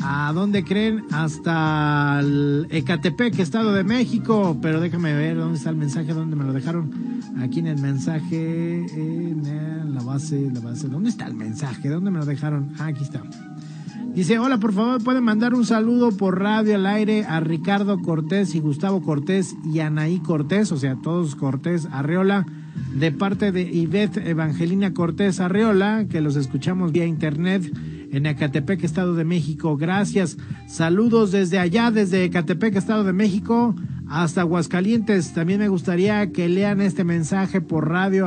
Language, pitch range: Spanish, 155-200 Hz